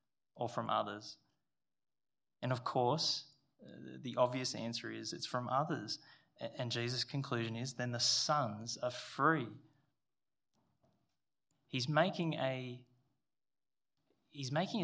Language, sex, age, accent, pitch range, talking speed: English, male, 20-39, Australian, 120-150 Hz, 95 wpm